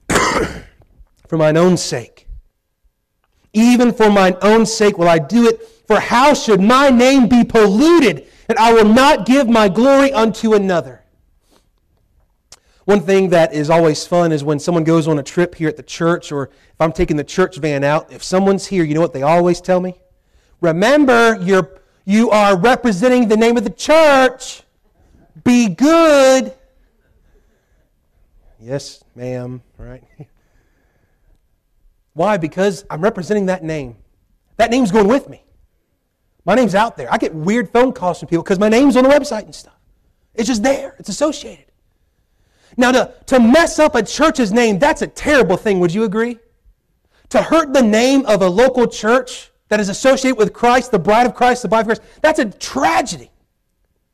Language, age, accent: English, 40-59, American